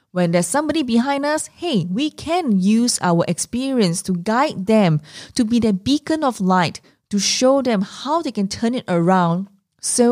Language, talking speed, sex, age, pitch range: English, 180 wpm, female, 20-39, 165-215 Hz